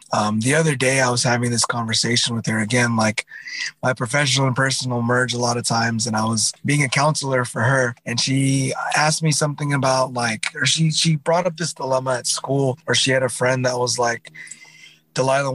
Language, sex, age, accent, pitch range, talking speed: English, male, 30-49, American, 120-135 Hz, 210 wpm